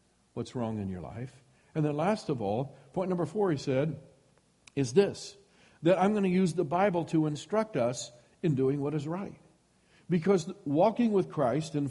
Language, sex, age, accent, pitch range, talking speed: English, male, 50-69, American, 130-175 Hz, 185 wpm